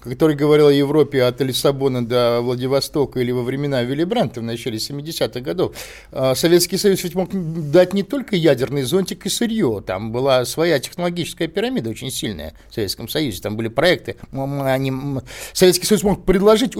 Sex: male